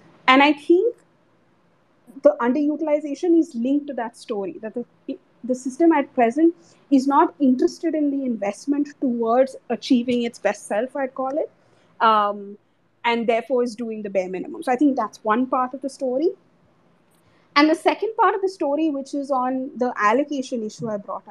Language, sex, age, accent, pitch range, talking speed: English, female, 30-49, Indian, 235-300 Hz, 175 wpm